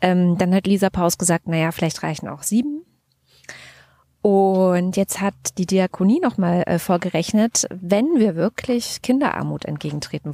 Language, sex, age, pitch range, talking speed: German, female, 20-39, 165-205 Hz, 130 wpm